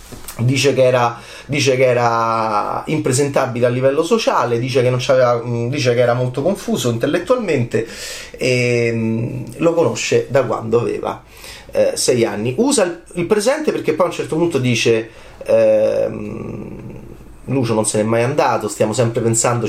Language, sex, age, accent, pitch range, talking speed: Italian, male, 30-49, native, 120-175 Hz, 145 wpm